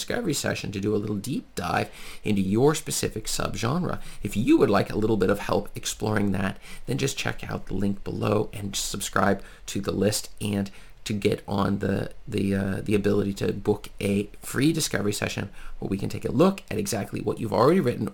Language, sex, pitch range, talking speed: English, male, 100-115 Hz, 205 wpm